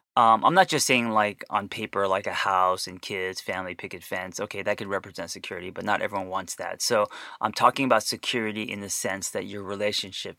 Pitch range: 95-115 Hz